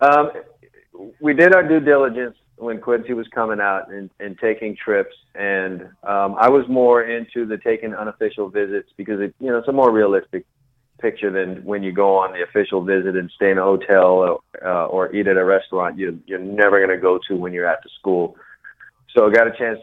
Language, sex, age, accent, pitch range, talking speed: English, male, 40-59, American, 100-125 Hz, 215 wpm